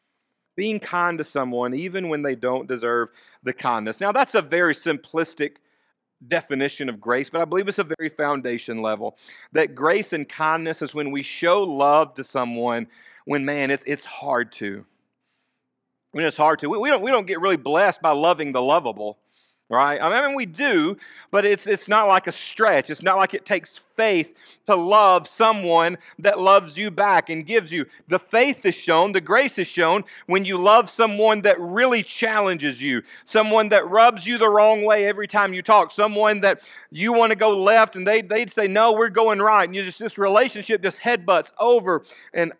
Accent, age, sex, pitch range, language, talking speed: American, 40-59, male, 155-220 Hz, English, 195 wpm